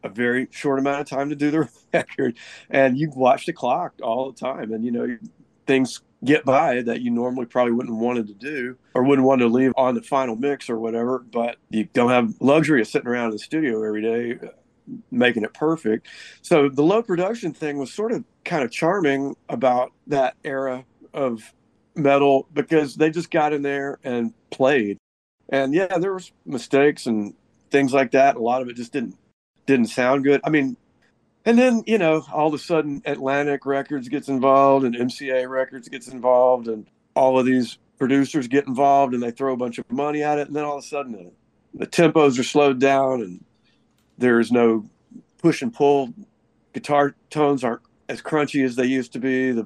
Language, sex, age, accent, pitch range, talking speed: English, male, 50-69, American, 125-150 Hz, 200 wpm